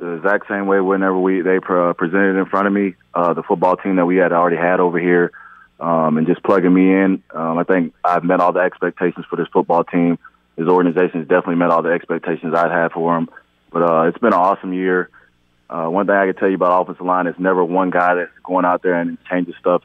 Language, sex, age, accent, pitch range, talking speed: English, male, 20-39, American, 85-95 Hz, 250 wpm